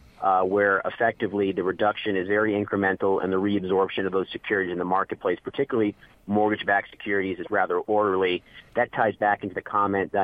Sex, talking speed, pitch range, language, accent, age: male, 175 wpm, 95-110 Hz, English, American, 30-49